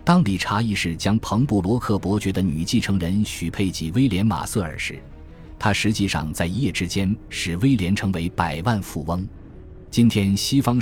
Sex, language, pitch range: male, Chinese, 85-110 Hz